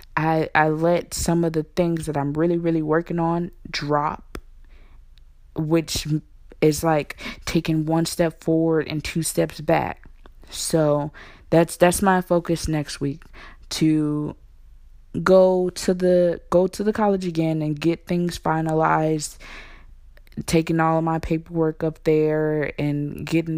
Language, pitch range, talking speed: English, 155-175 Hz, 135 wpm